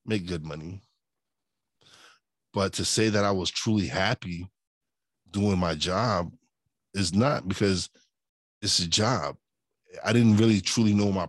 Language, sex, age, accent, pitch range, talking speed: English, male, 20-39, American, 95-110 Hz, 140 wpm